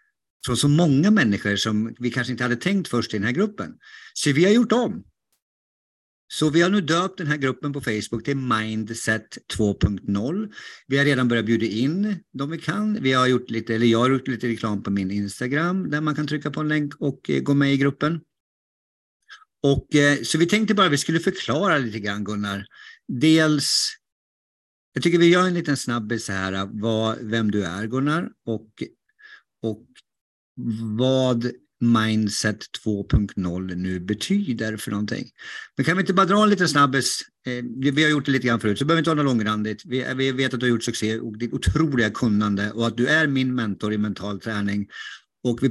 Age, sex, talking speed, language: 50-69, male, 195 wpm, English